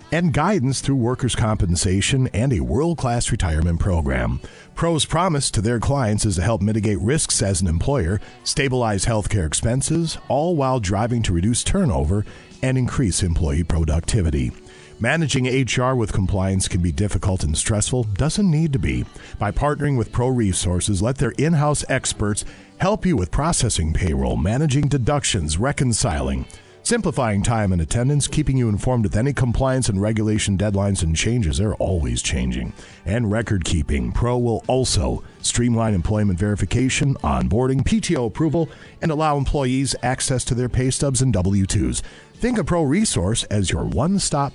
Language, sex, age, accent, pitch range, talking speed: English, male, 50-69, American, 95-135 Hz, 150 wpm